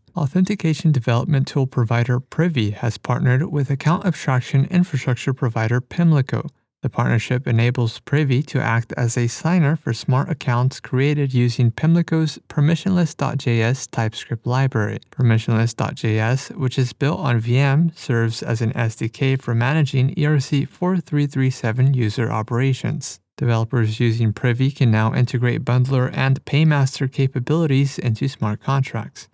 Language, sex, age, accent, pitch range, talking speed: English, male, 30-49, American, 115-145 Hz, 120 wpm